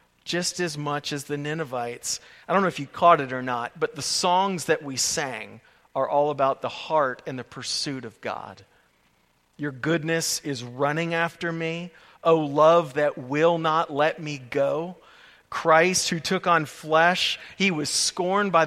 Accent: American